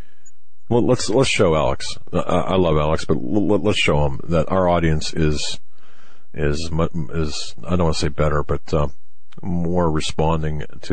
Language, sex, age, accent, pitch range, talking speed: English, male, 40-59, American, 70-85 Hz, 160 wpm